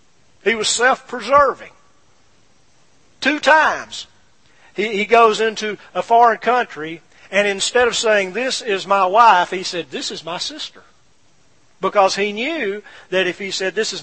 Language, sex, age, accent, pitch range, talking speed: English, male, 50-69, American, 185-245 Hz, 145 wpm